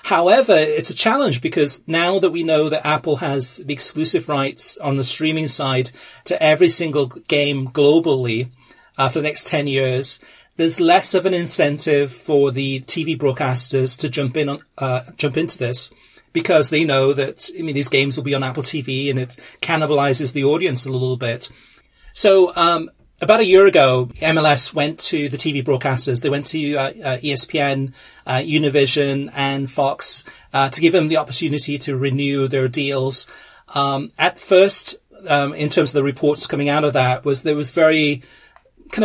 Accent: British